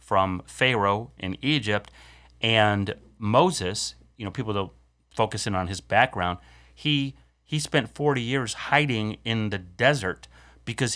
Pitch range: 90-120 Hz